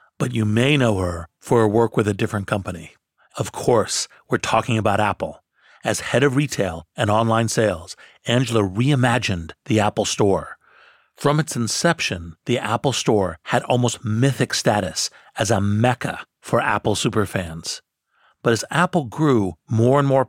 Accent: American